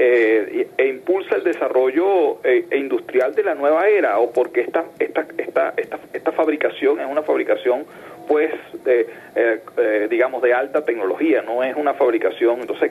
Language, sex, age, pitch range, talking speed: Spanish, male, 40-59, 350-445 Hz, 165 wpm